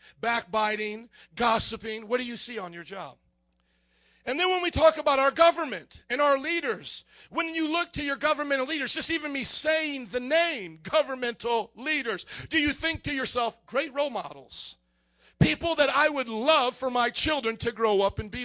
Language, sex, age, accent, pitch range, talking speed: English, male, 40-59, American, 205-275 Hz, 180 wpm